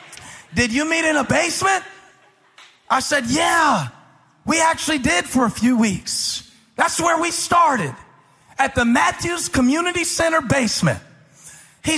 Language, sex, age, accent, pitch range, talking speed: English, male, 40-59, American, 225-305 Hz, 135 wpm